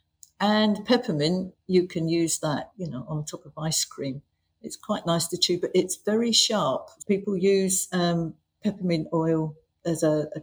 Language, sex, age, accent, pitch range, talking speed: English, female, 50-69, British, 150-180 Hz, 175 wpm